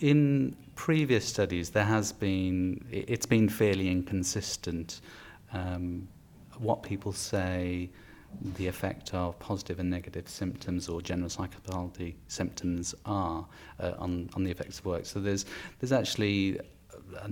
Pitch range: 90-105 Hz